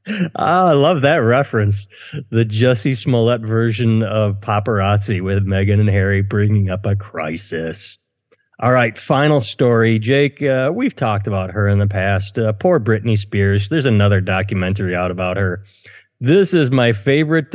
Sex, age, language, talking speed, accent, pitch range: male, 30-49, English, 155 wpm, American, 105-145 Hz